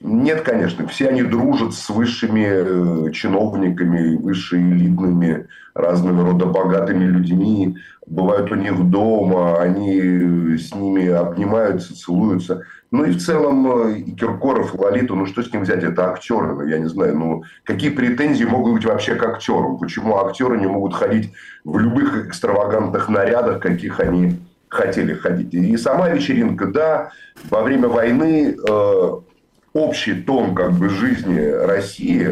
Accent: native